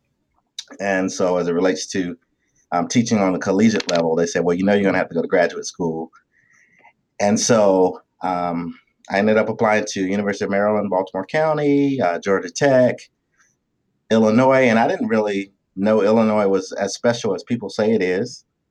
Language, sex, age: English, male, 30-49